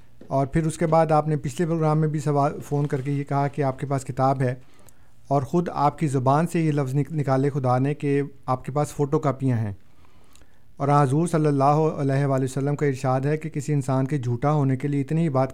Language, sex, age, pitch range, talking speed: Urdu, male, 50-69, 130-155 Hz, 240 wpm